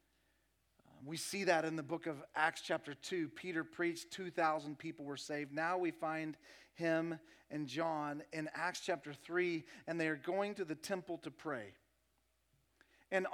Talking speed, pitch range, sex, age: 160 wpm, 165-220 Hz, male, 40-59